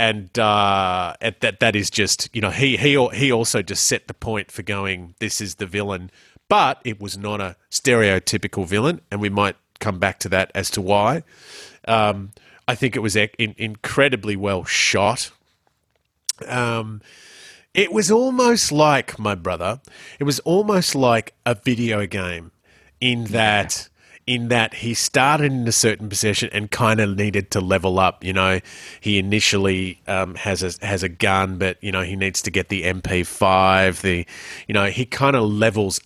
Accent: Australian